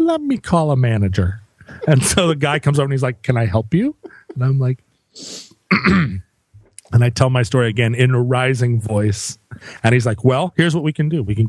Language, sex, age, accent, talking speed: English, male, 40-59, American, 220 wpm